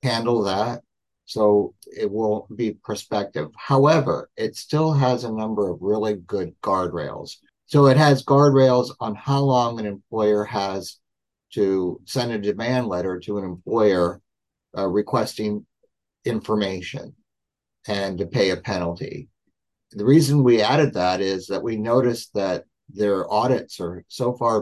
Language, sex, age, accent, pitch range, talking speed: English, male, 50-69, American, 100-125 Hz, 140 wpm